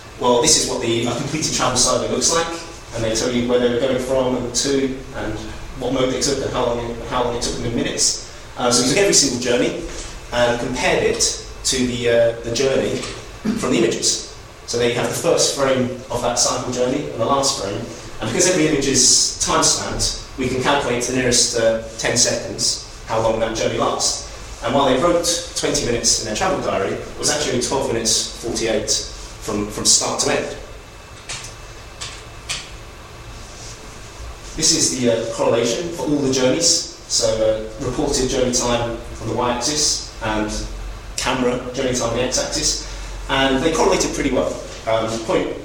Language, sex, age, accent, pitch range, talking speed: English, male, 30-49, British, 115-130 Hz, 185 wpm